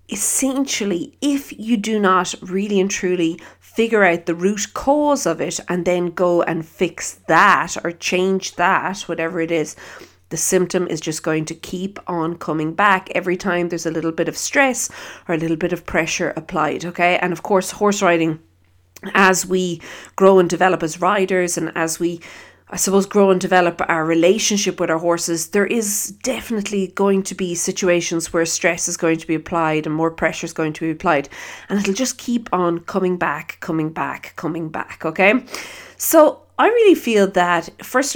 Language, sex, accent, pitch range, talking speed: English, female, Irish, 165-200 Hz, 185 wpm